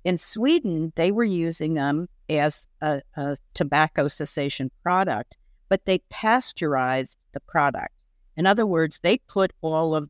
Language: English